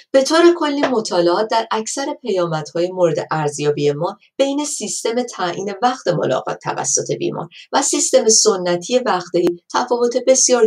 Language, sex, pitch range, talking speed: Persian, female, 170-240 Hz, 135 wpm